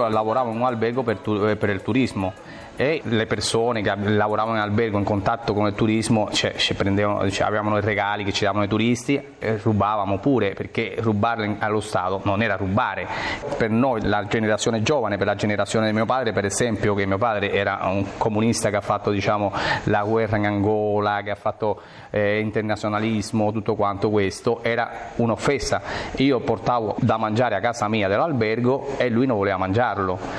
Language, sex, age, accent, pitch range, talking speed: Italian, male, 30-49, native, 105-120 Hz, 180 wpm